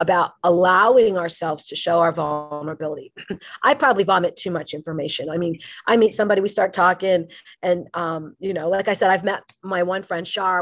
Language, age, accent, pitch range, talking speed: English, 40-59, American, 160-190 Hz, 190 wpm